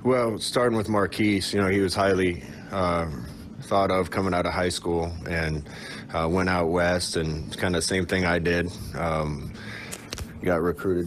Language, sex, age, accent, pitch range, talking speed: English, male, 30-49, American, 80-95 Hz, 175 wpm